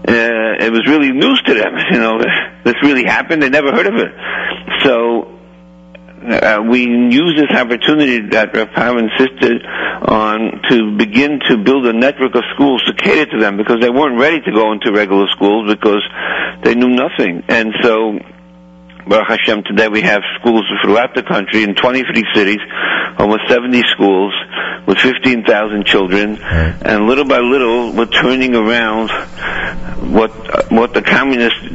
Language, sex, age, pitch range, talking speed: English, male, 60-79, 100-120 Hz, 155 wpm